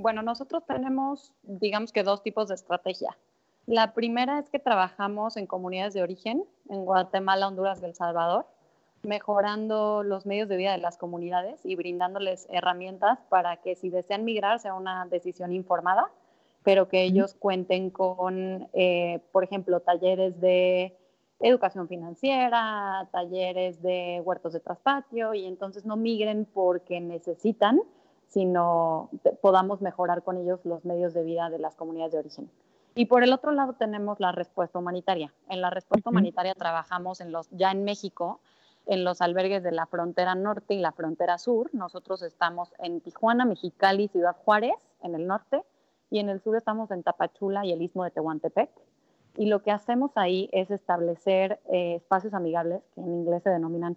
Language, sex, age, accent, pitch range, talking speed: English, female, 30-49, Mexican, 180-210 Hz, 165 wpm